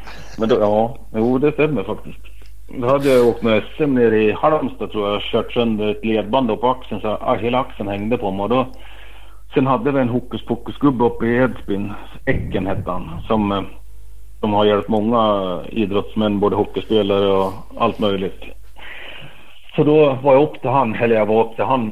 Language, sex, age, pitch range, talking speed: Swedish, male, 60-79, 105-125 Hz, 185 wpm